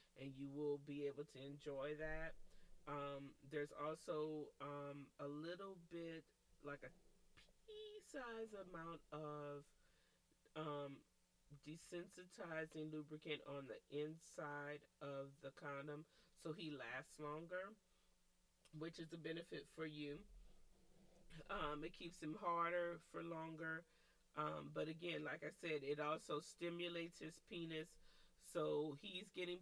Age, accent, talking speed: 30-49, American, 120 wpm